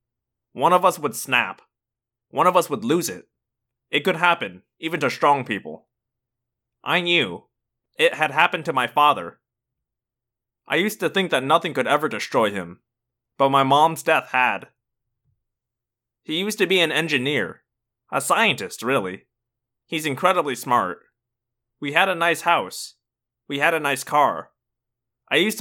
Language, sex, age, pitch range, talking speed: English, male, 20-39, 120-160 Hz, 150 wpm